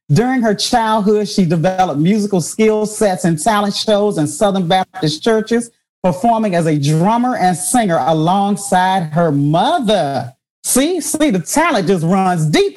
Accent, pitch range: American, 160-210 Hz